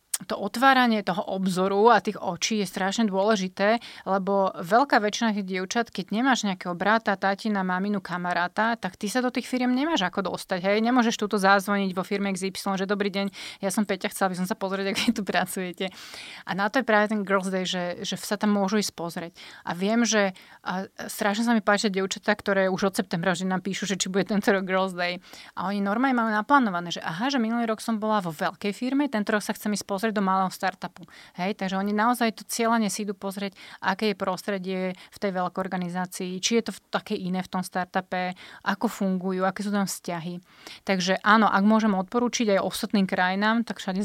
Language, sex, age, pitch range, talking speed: Slovak, female, 30-49, 185-215 Hz, 210 wpm